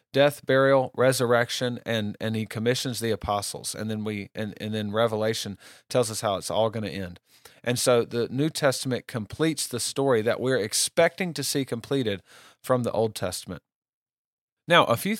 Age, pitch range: 40-59, 110-135 Hz